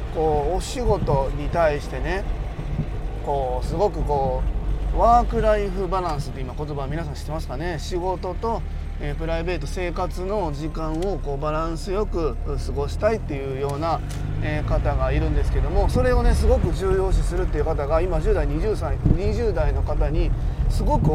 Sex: male